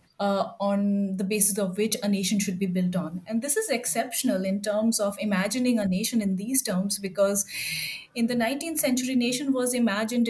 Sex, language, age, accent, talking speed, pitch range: female, English, 30-49, Indian, 190 wpm, 195-245 Hz